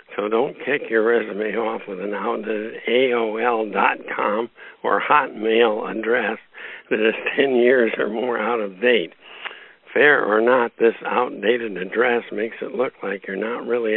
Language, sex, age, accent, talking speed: English, male, 60-79, American, 145 wpm